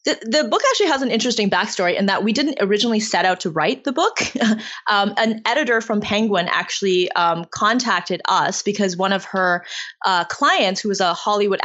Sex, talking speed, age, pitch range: female, 195 wpm, 20-39, 180-230 Hz